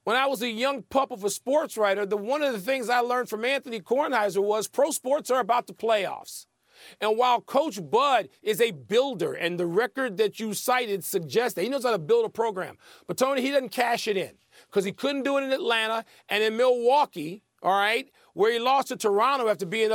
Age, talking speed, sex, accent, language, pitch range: 40-59, 225 wpm, male, American, English, 220-275 Hz